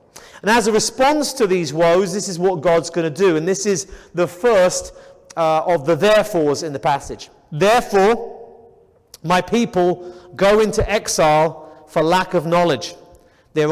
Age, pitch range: 30-49, 160-215 Hz